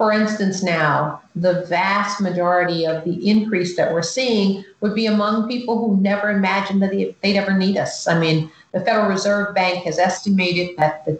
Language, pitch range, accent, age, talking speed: English, 165-200 Hz, American, 50-69, 180 wpm